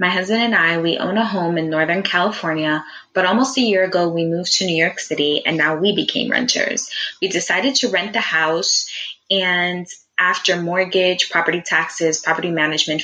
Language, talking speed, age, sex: English, 185 wpm, 20-39, female